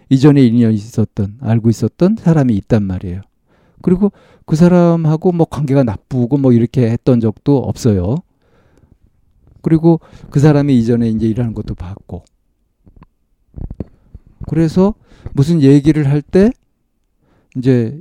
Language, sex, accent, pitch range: Korean, male, native, 110-145 Hz